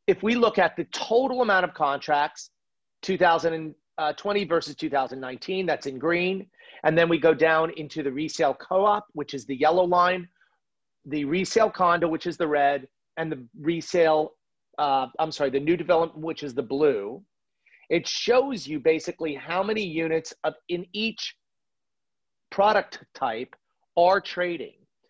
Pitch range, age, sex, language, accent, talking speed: 150-190 Hz, 40-59, male, English, American, 150 wpm